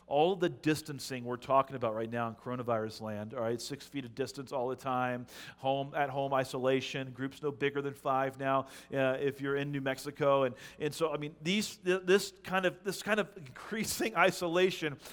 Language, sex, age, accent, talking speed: English, male, 40-59, American, 200 wpm